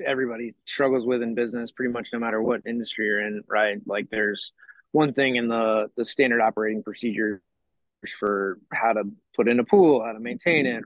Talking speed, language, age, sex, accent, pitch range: 195 wpm, English, 20-39, male, American, 115-130 Hz